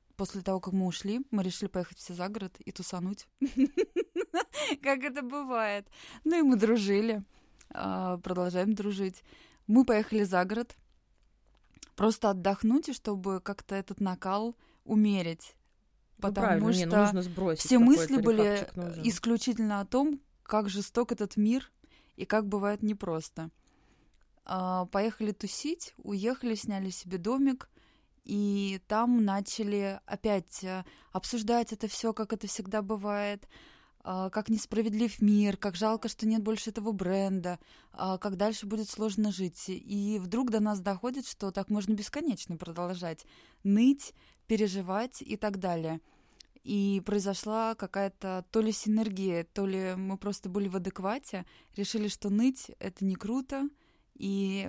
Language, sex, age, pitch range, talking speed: Russian, female, 20-39, 190-225 Hz, 130 wpm